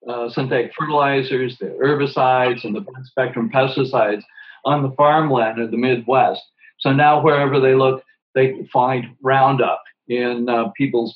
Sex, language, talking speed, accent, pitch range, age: male, English, 140 wpm, American, 120-140 Hz, 50-69